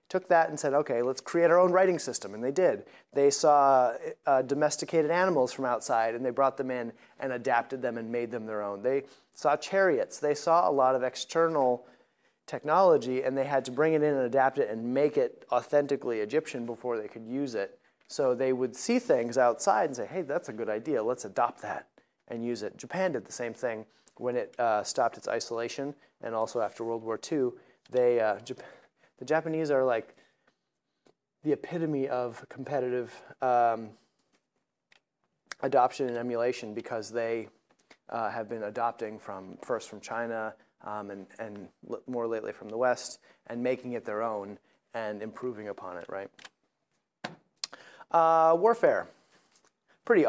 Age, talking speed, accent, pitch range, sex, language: 30-49, 175 wpm, American, 115-145 Hz, male, English